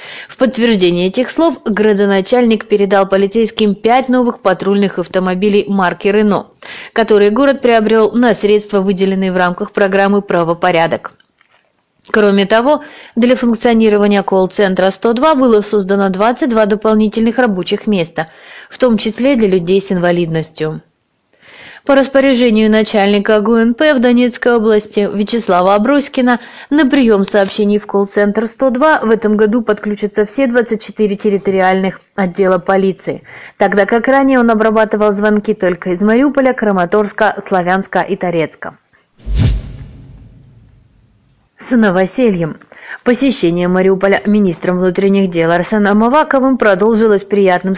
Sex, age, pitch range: female, 20-39, 195-235 Hz